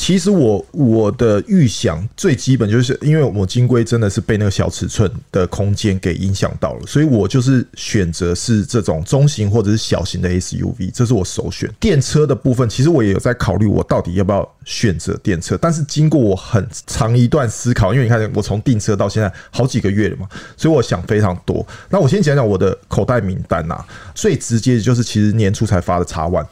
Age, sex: 20-39, male